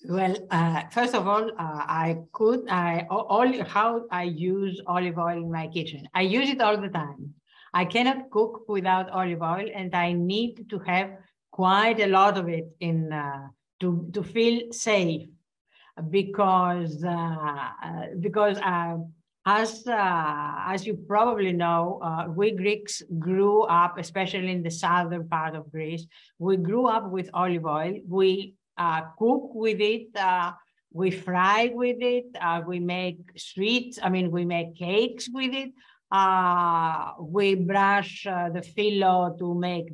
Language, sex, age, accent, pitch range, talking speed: English, female, 50-69, Spanish, 170-210 Hz, 155 wpm